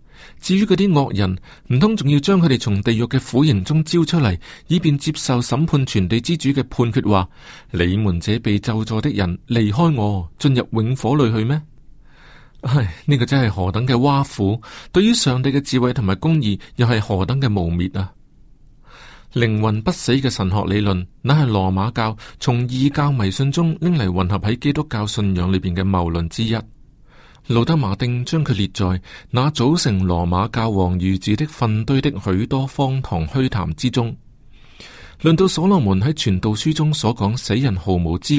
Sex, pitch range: male, 95-140 Hz